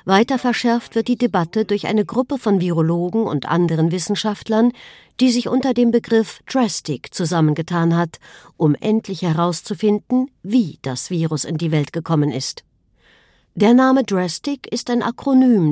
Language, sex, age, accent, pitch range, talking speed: German, female, 50-69, German, 165-220 Hz, 145 wpm